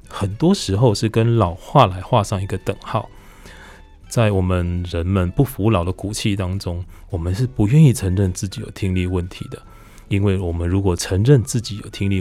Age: 20-39